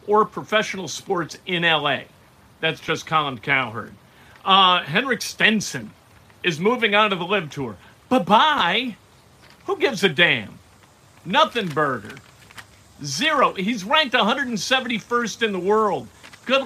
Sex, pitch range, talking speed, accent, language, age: male, 145-230 Hz, 125 wpm, American, English, 50-69